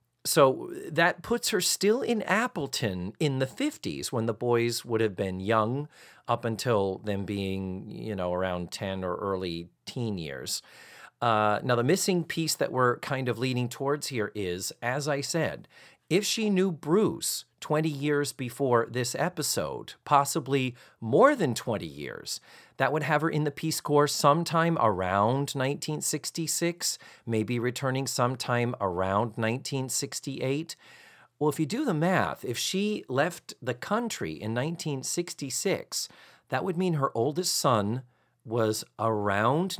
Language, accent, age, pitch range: English, American, 40-59, 115-165 Hz